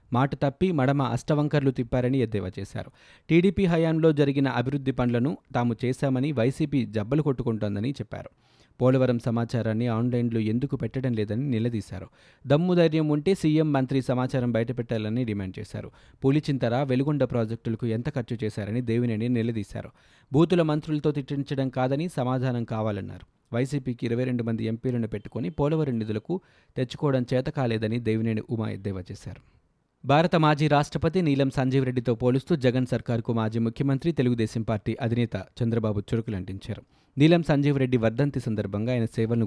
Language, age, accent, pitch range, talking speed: Telugu, 20-39, native, 115-145 Hz, 125 wpm